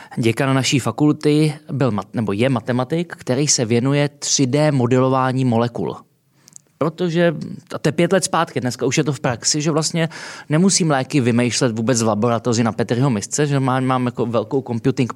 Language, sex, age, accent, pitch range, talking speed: Czech, male, 20-39, native, 120-155 Hz, 160 wpm